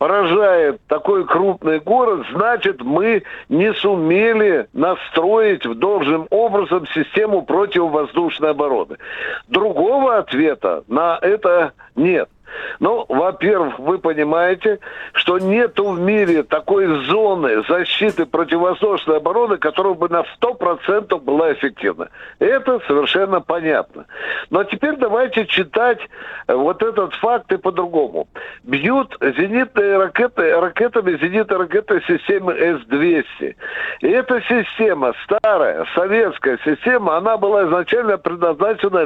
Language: Russian